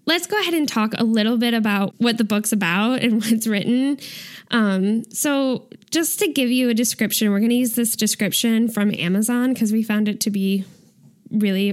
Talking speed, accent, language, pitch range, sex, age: 205 wpm, American, English, 205-245 Hz, female, 10-29